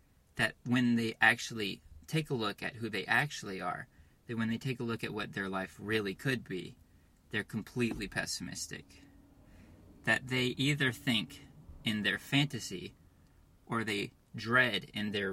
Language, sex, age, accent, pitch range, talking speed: English, male, 20-39, American, 90-125 Hz, 155 wpm